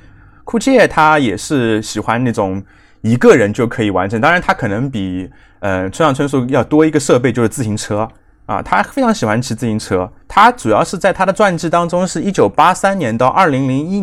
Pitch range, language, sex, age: 110-150 Hz, Chinese, male, 20-39